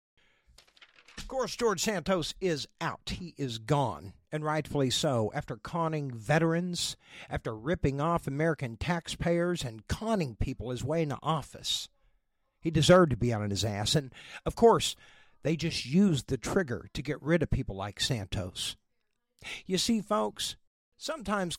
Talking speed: 145 wpm